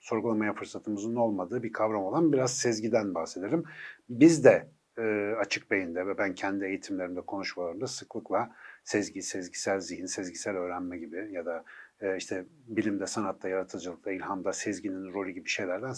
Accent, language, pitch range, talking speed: native, Turkish, 105-140 Hz, 145 wpm